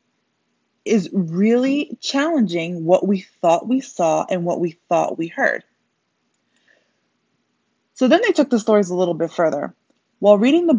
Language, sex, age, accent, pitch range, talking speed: English, female, 20-39, American, 170-220 Hz, 150 wpm